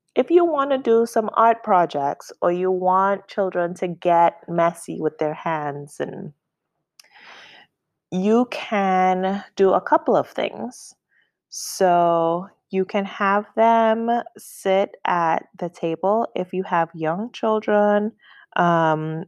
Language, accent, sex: English, American, female